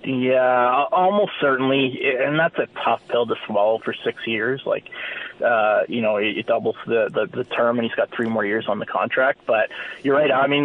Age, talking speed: 20-39, 210 wpm